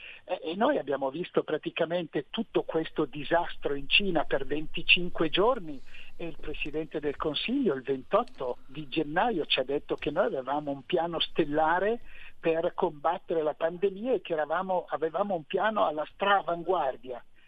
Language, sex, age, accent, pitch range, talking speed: Italian, male, 60-79, native, 140-175 Hz, 150 wpm